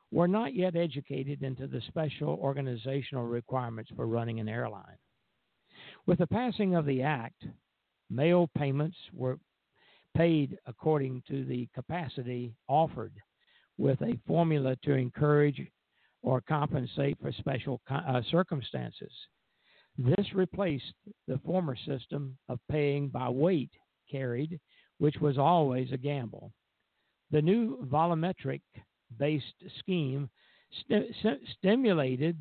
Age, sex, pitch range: 60-79, male, 130-175 Hz